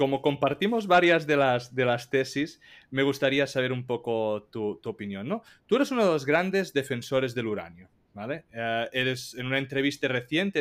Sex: male